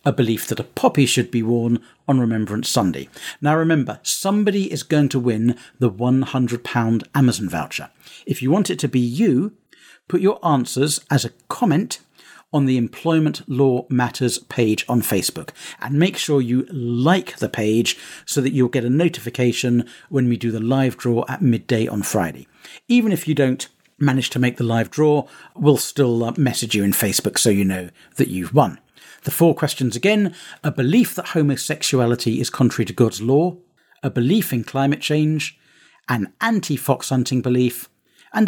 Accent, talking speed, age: British, 175 wpm, 50-69